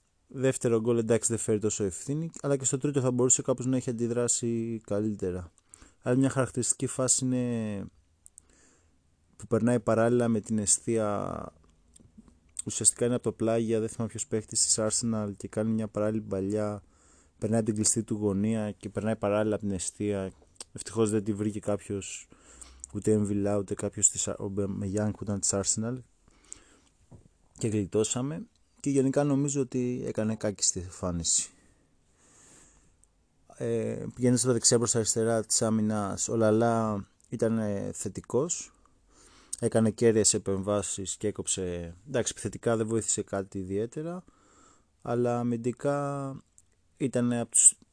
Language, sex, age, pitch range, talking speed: Greek, male, 20-39, 100-120 Hz, 135 wpm